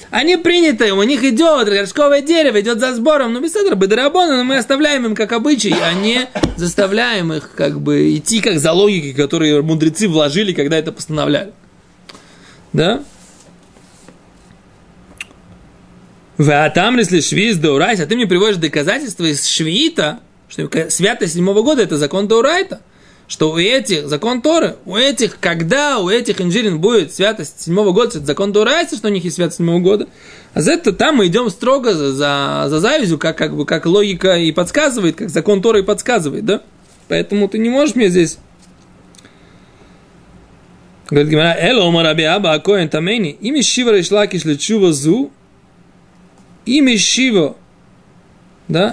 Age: 20-39